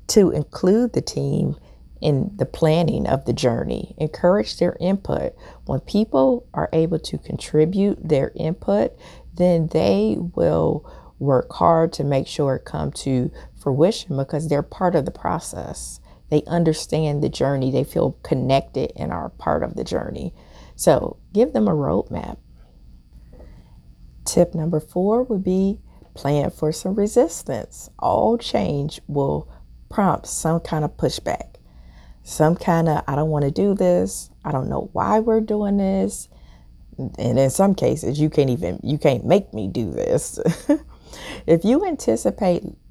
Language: English